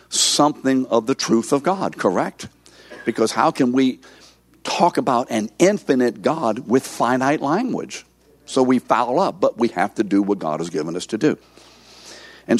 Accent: American